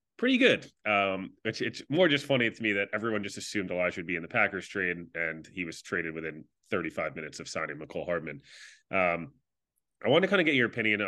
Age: 30-49